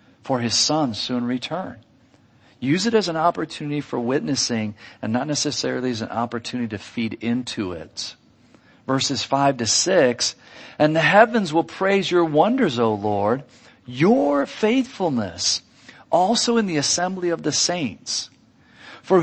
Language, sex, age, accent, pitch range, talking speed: English, male, 50-69, American, 120-190 Hz, 140 wpm